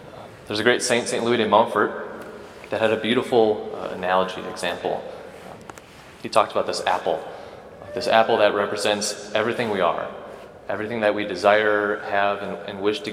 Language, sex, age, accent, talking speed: English, male, 30-49, American, 165 wpm